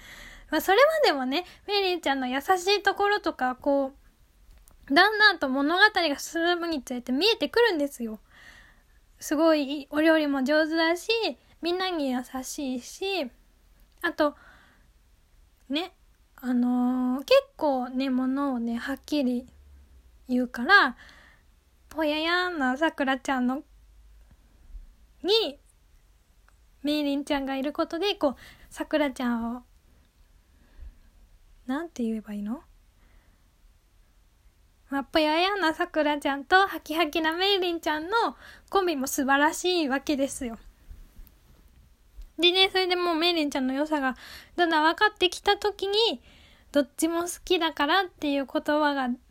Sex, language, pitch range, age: female, Japanese, 250-330 Hz, 10-29